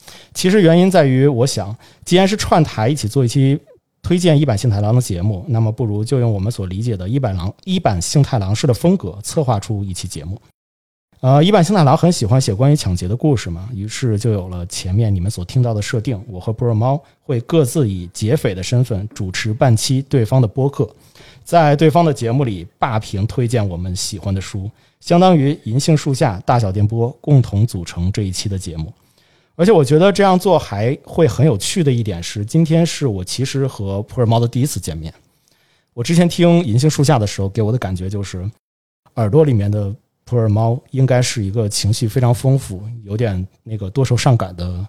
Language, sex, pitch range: Chinese, male, 105-145 Hz